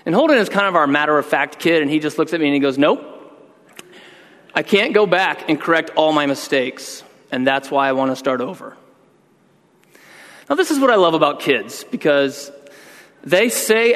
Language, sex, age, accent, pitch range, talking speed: English, male, 30-49, American, 140-190 Hz, 200 wpm